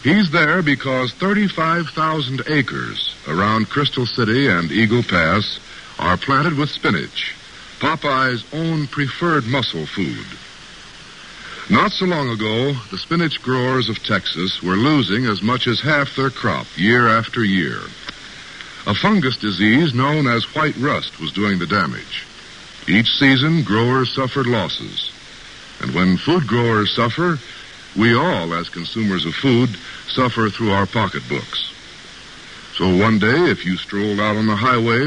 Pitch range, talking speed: 105-150 Hz, 140 wpm